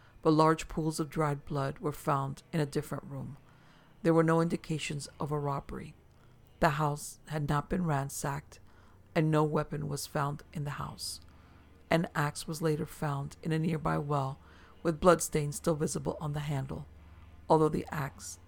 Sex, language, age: female, English, 50-69